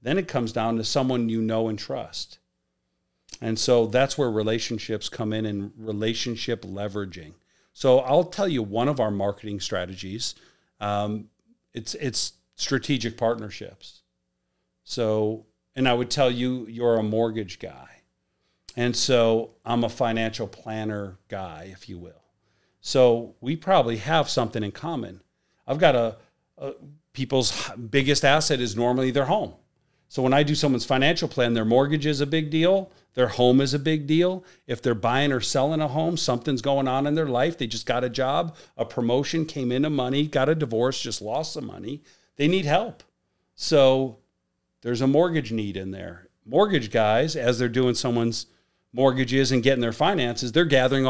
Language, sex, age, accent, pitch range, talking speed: English, male, 40-59, American, 110-140 Hz, 170 wpm